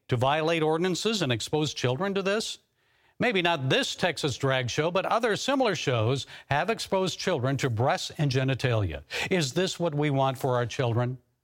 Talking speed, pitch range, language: 175 wpm, 135-180 Hz, English